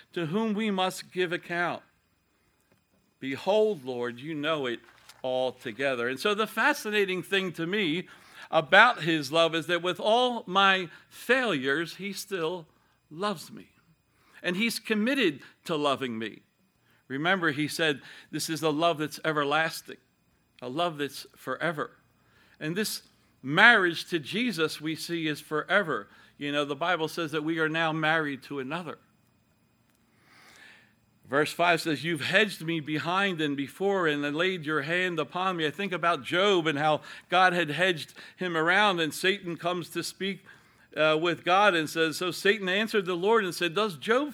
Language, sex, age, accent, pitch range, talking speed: English, male, 60-79, American, 155-200 Hz, 160 wpm